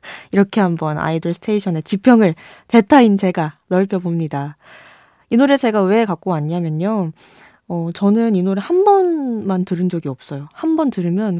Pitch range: 165-215 Hz